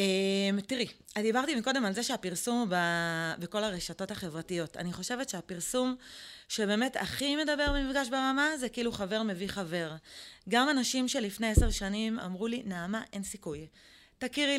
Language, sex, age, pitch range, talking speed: Hebrew, female, 30-49, 195-245 Hz, 150 wpm